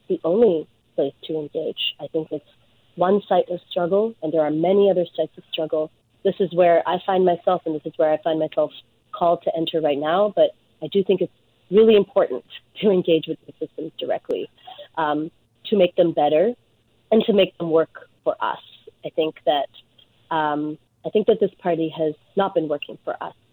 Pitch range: 155-185 Hz